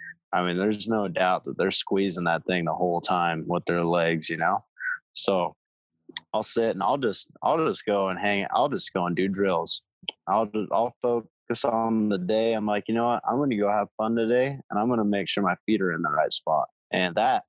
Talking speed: 235 wpm